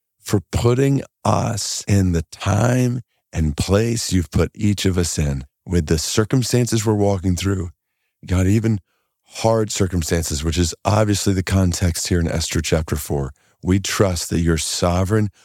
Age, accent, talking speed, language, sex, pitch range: 40-59, American, 150 wpm, English, male, 85-110 Hz